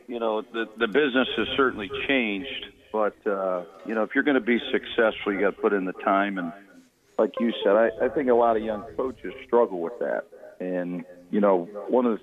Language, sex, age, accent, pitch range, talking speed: English, male, 50-69, American, 95-115 Hz, 225 wpm